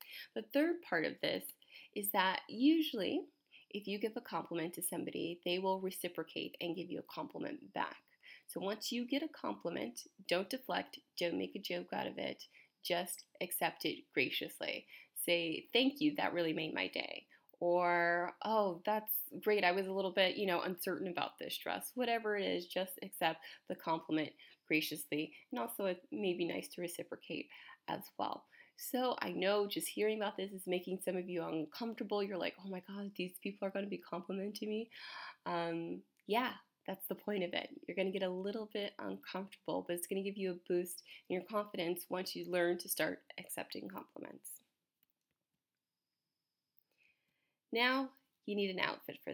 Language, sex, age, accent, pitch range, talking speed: English, female, 20-39, American, 175-215 Hz, 180 wpm